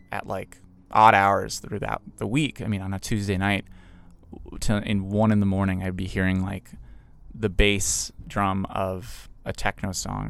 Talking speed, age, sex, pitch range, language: 175 wpm, 20-39, male, 95-115 Hz, English